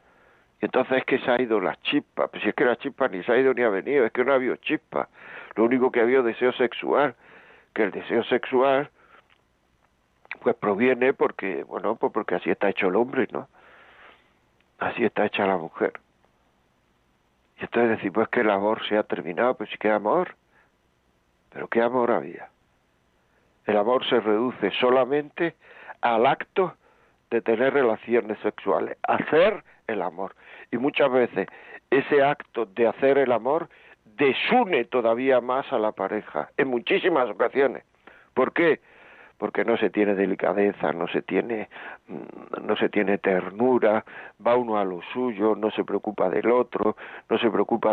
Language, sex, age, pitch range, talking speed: Spanish, male, 60-79, 100-125 Hz, 165 wpm